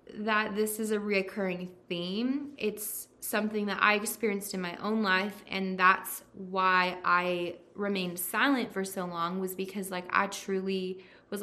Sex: female